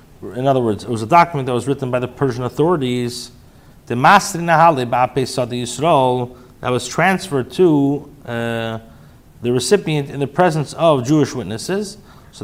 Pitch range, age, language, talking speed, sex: 120-155 Hz, 40-59, English, 135 wpm, male